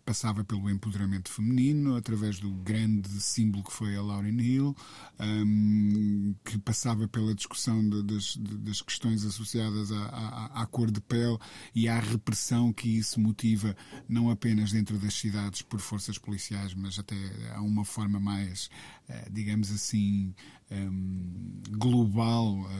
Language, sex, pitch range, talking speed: Portuguese, male, 105-125 Hz, 130 wpm